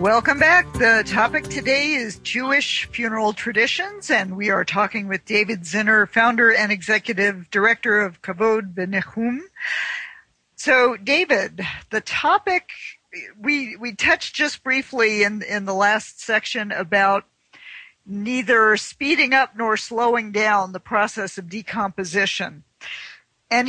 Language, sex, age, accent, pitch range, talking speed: English, female, 50-69, American, 195-235 Hz, 125 wpm